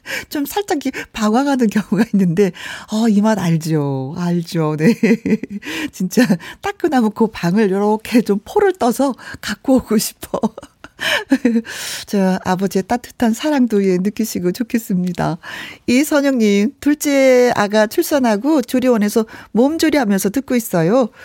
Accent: native